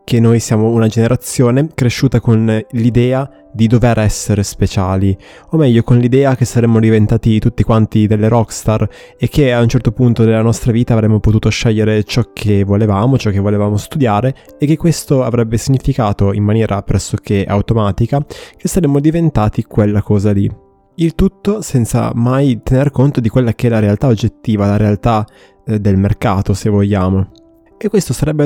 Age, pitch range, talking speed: 20-39, 105-135 Hz, 165 wpm